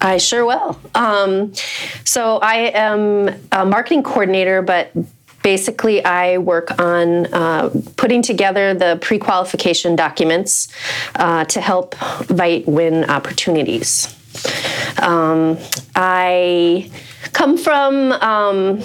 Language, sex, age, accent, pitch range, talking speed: English, female, 30-49, American, 175-210 Hz, 100 wpm